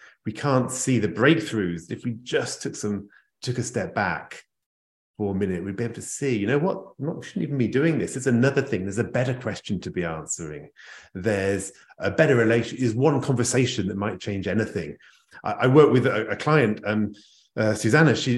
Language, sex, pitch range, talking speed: English, male, 105-135 Hz, 210 wpm